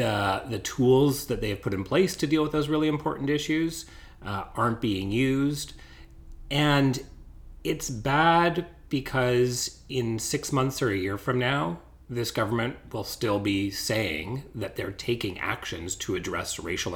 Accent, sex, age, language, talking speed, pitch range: American, male, 30-49, English, 160 wpm, 115-150 Hz